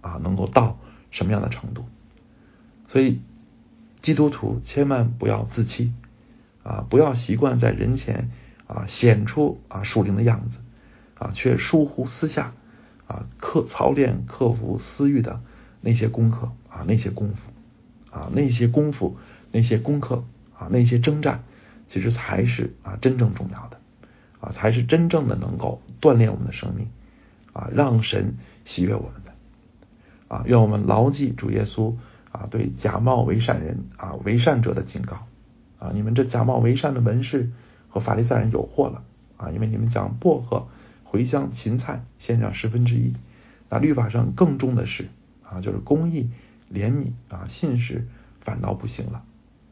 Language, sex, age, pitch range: Chinese, male, 50-69, 110-125 Hz